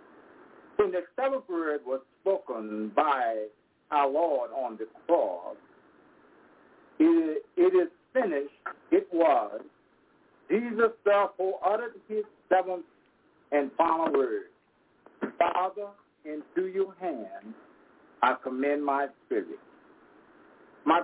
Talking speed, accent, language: 105 wpm, American, English